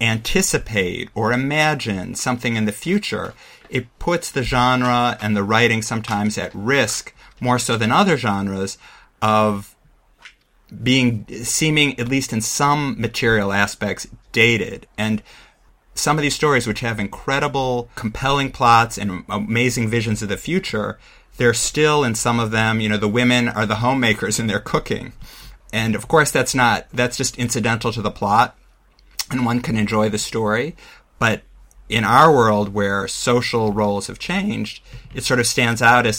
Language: English